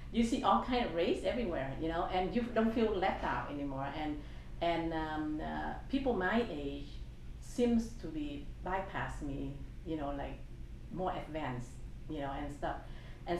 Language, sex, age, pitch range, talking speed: English, female, 50-69, 135-175 Hz, 170 wpm